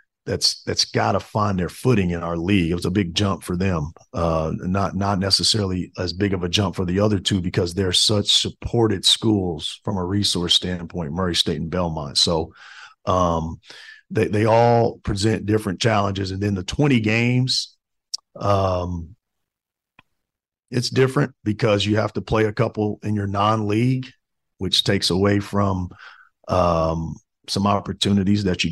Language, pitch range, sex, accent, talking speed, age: English, 90-110 Hz, male, American, 165 wpm, 40-59